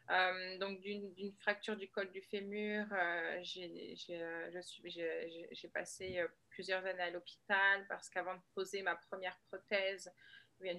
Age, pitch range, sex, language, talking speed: 20-39, 180-200 Hz, female, French, 160 wpm